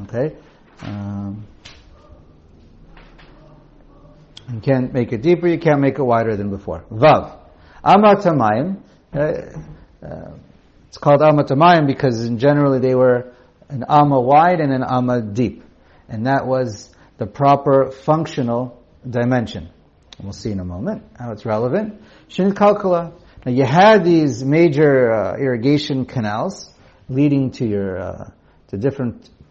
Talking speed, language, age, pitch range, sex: 130 wpm, English, 50-69, 110-150 Hz, male